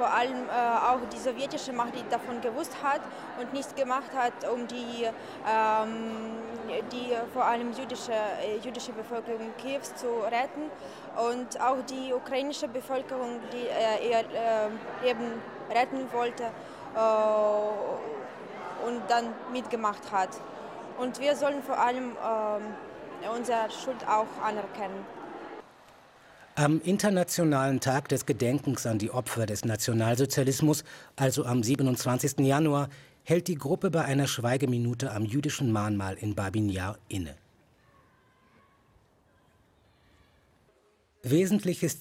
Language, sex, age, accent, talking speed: German, female, 20-39, German, 115 wpm